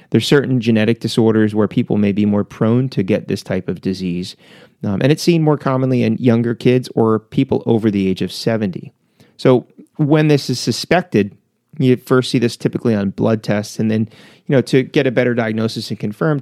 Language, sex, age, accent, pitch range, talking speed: English, male, 30-49, American, 100-125 Hz, 205 wpm